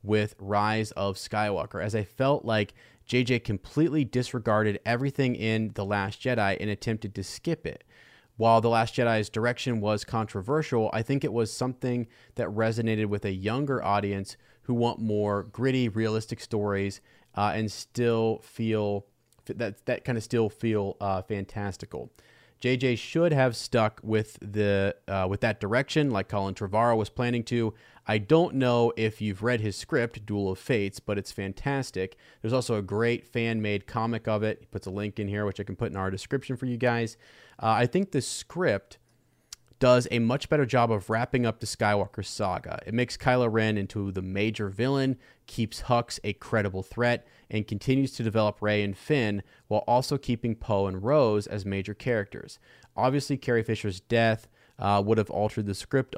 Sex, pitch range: male, 105-125 Hz